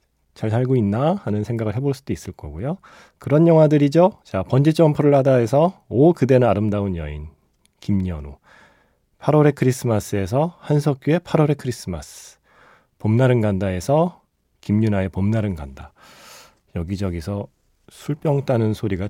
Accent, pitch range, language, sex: native, 95-135 Hz, Korean, male